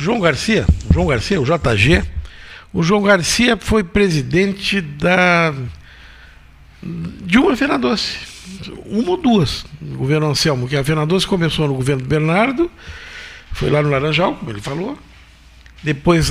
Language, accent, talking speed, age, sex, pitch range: Portuguese, Brazilian, 145 wpm, 60-79, male, 135-180 Hz